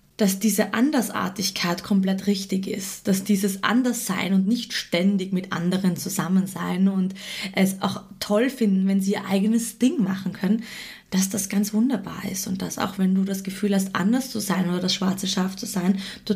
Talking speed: 185 wpm